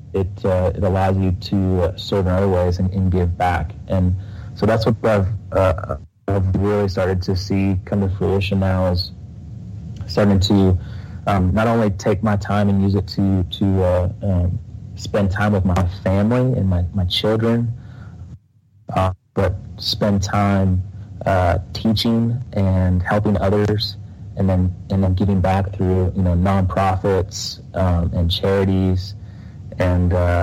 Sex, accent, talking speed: male, American, 155 wpm